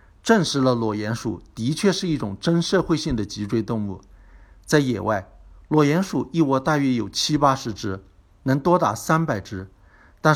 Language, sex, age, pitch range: Chinese, male, 60-79, 105-145 Hz